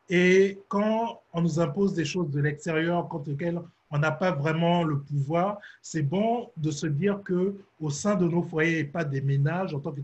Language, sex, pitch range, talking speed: French, male, 150-180 Hz, 205 wpm